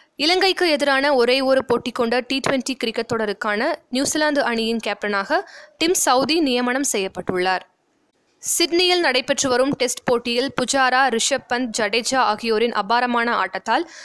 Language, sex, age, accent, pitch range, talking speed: Tamil, female, 20-39, native, 230-285 Hz, 125 wpm